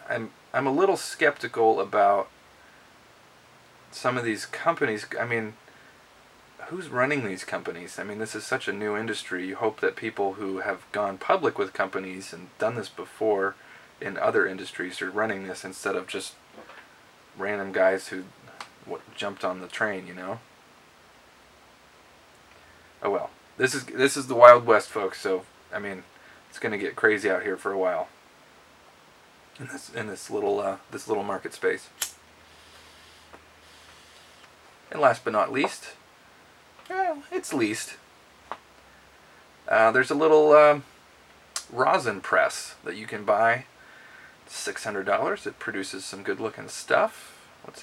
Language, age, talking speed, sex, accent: English, 20-39, 150 wpm, male, American